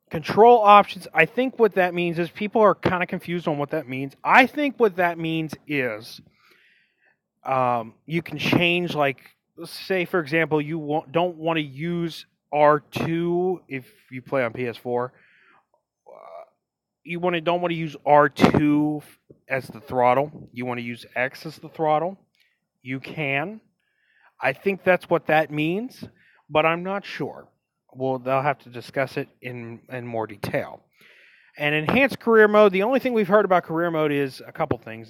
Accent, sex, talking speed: American, male, 170 wpm